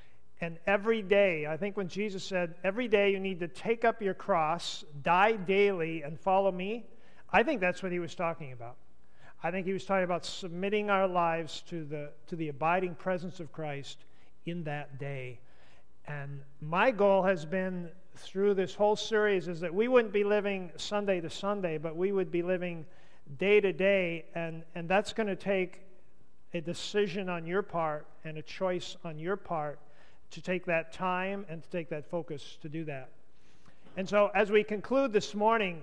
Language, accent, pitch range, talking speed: English, American, 160-200 Hz, 185 wpm